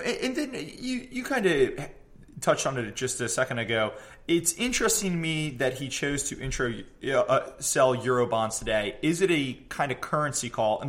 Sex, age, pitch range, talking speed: male, 20-39, 120-150 Hz, 195 wpm